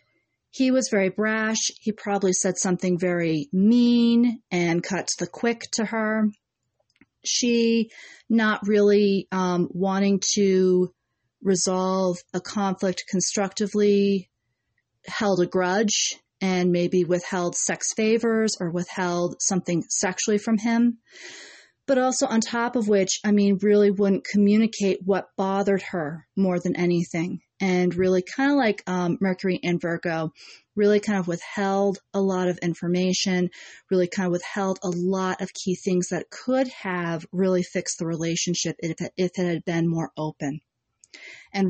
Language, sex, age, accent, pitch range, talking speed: English, female, 40-59, American, 175-205 Hz, 140 wpm